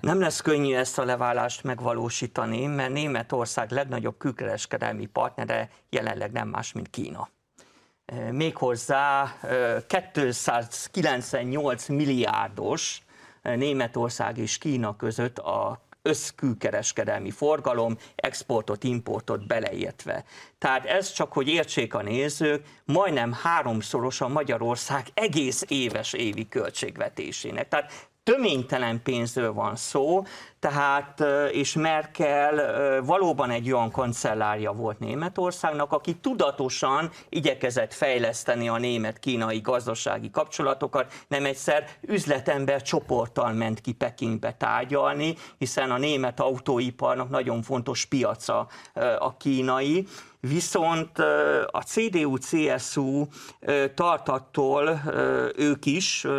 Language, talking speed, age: Hungarian, 95 wpm, 50-69